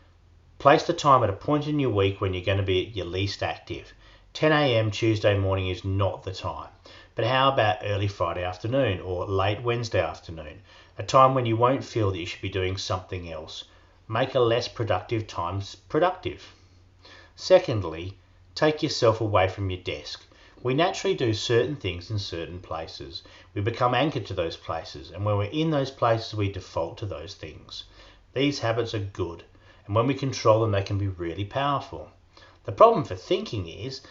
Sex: male